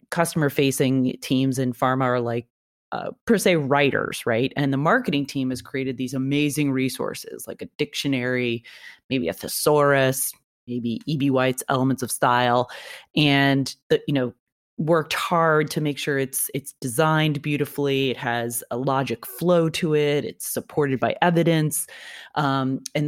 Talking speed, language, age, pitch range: 155 wpm, English, 30-49, 130-155 Hz